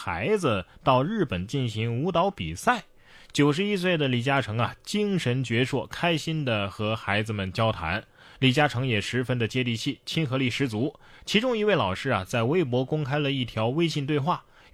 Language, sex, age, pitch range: Chinese, male, 20-39, 115-160 Hz